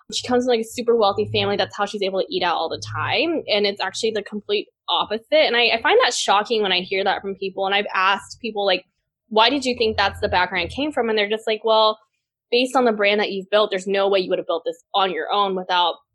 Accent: American